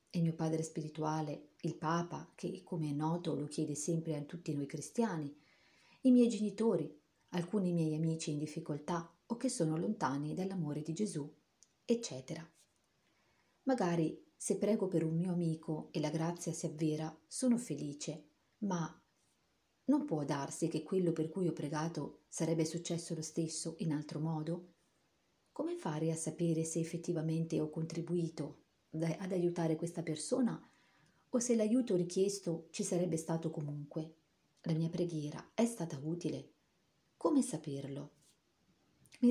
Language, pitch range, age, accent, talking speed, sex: Italian, 155-180 Hz, 40-59, native, 140 wpm, female